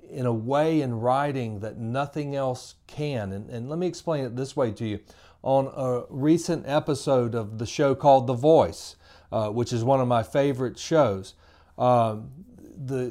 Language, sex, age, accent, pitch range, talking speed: English, male, 40-59, American, 120-150 Hz, 180 wpm